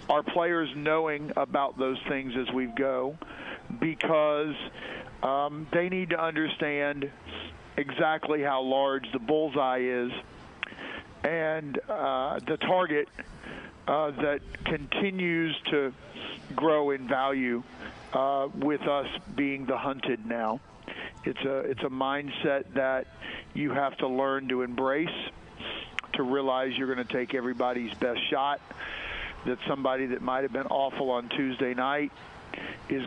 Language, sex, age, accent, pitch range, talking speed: English, male, 50-69, American, 130-150 Hz, 125 wpm